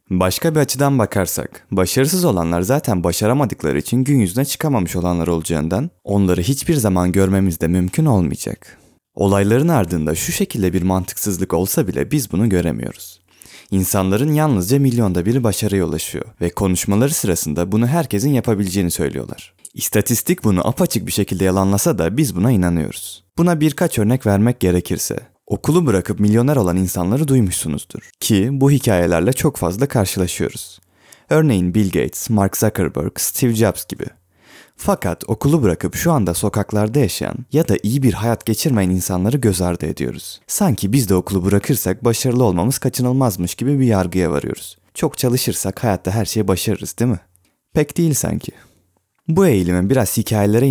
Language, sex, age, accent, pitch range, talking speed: Turkish, male, 30-49, native, 90-125 Hz, 145 wpm